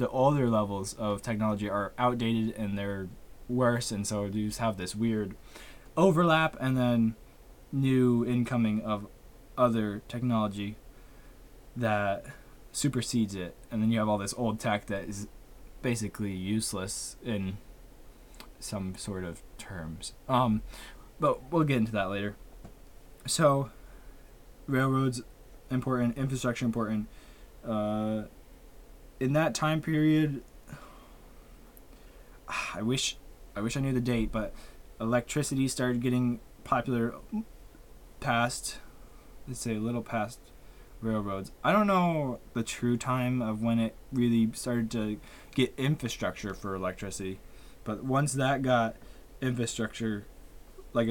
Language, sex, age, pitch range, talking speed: English, male, 20-39, 105-125 Hz, 120 wpm